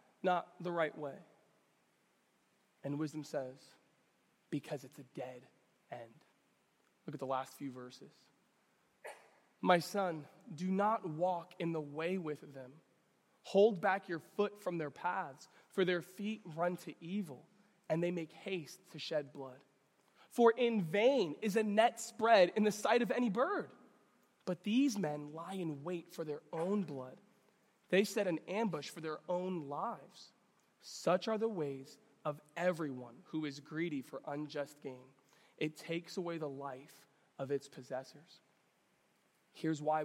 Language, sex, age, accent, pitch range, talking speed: English, male, 20-39, American, 145-185 Hz, 150 wpm